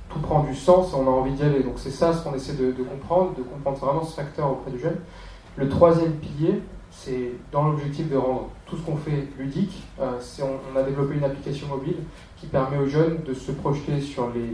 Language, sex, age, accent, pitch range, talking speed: French, male, 20-39, French, 130-160 Hz, 235 wpm